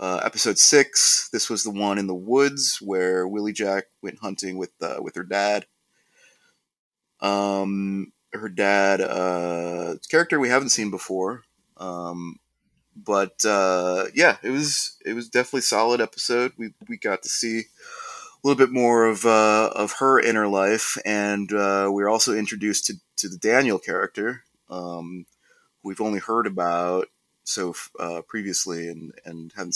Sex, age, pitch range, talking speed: male, 30-49, 95-115 Hz, 155 wpm